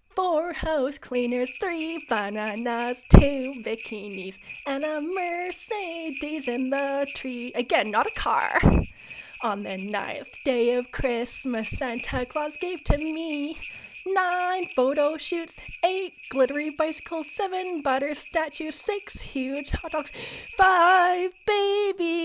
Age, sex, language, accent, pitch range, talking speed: 20-39, female, English, American, 250-350 Hz, 115 wpm